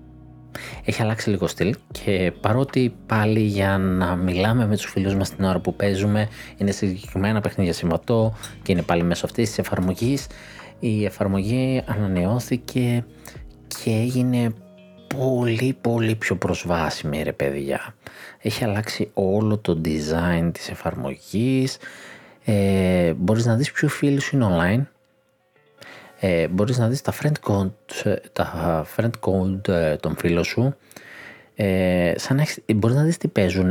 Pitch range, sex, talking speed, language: 90-115 Hz, male, 130 wpm, Greek